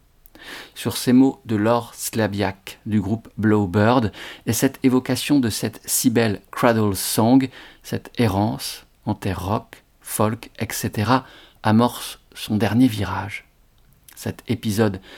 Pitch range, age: 95-120 Hz, 50-69